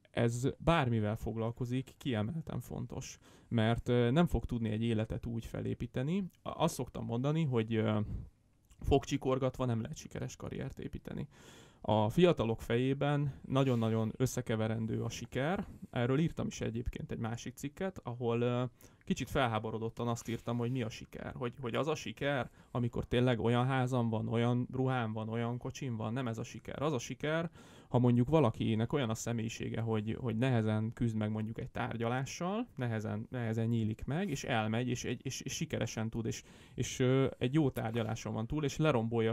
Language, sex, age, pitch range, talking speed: Hungarian, male, 30-49, 110-130 Hz, 160 wpm